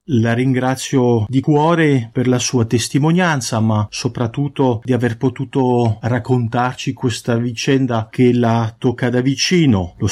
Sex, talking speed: male, 130 wpm